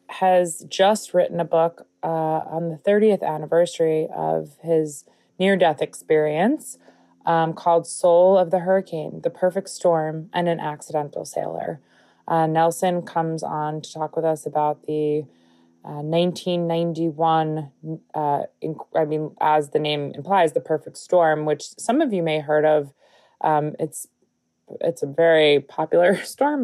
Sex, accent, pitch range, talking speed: female, American, 150-175 Hz, 145 wpm